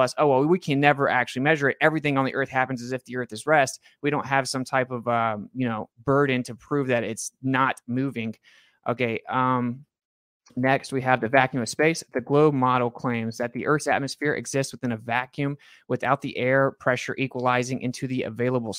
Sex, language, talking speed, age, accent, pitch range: male, English, 210 wpm, 20-39, American, 120-135 Hz